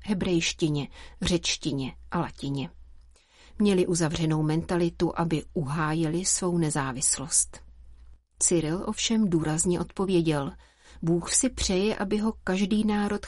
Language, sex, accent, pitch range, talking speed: Czech, female, native, 155-190 Hz, 100 wpm